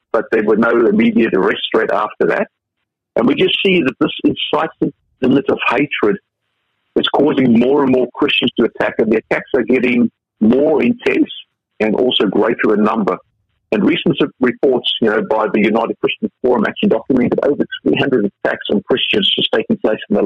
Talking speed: 180 wpm